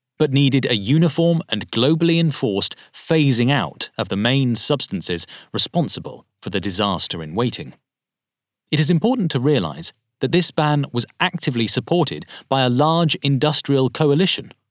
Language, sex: English, male